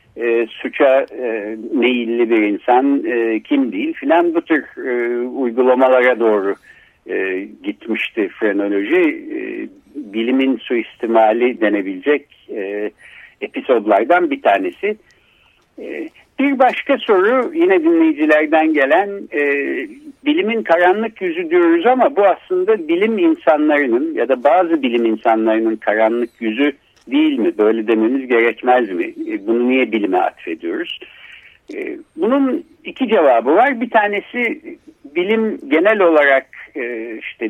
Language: Turkish